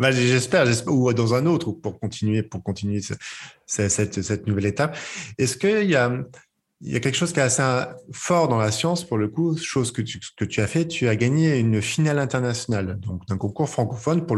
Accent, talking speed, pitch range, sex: French, 215 wpm, 105-150 Hz, male